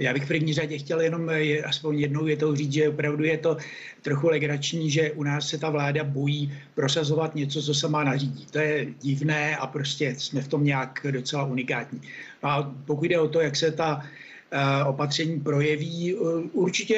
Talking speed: 180 wpm